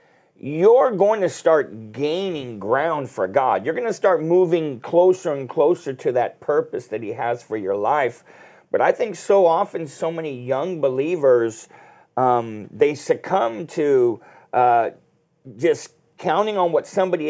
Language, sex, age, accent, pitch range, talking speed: English, male, 50-69, American, 140-190 Hz, 155 wpm